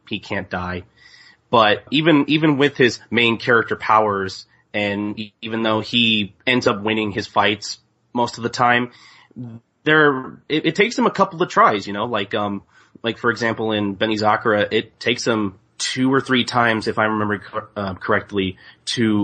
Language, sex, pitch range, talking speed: English, male, 105-125 Hz, 180 wpm